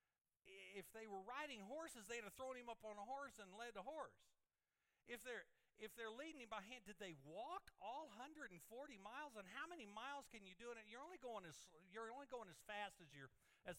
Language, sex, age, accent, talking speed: English, male, 50-69, American, 230 wpm